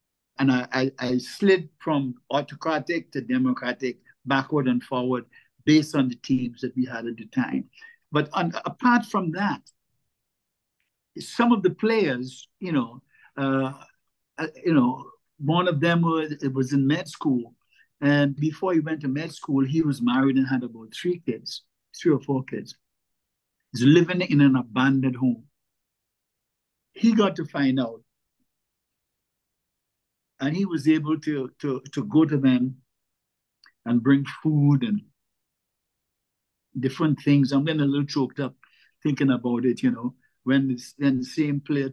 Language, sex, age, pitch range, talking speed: English, male, 60-79, 130-155 Hz, 155 wpm